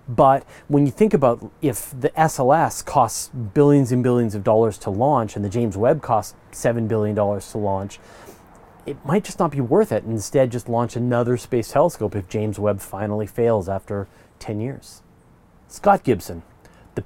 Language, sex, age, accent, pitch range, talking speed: English, male, 30-49, American, 110-145 Hz, 175 wpm